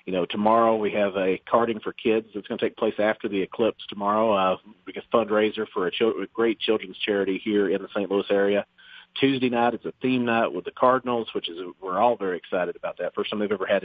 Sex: male